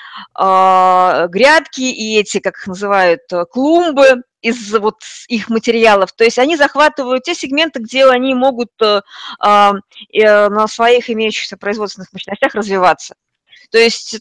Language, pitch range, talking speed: Russian, 205-265 Hz, 120 wpm